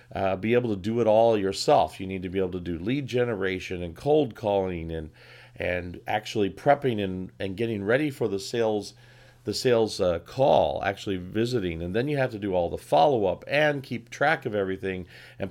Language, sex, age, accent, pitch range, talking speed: English, male, 40-59, American, 95-125 Hz, 205 wpm